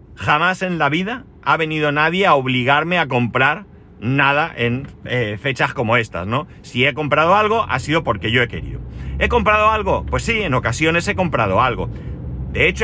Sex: male